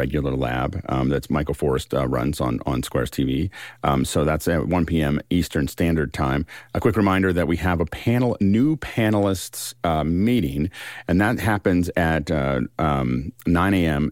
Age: 40-59